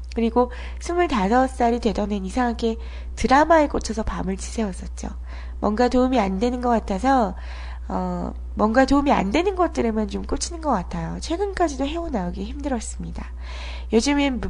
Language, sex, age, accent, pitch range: Korean, female, 20-39, native, 180-270 Hz